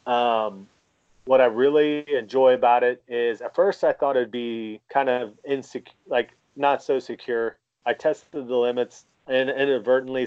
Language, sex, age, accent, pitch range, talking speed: English, male, 30-49, American, 120-145 Hz, 160 wpm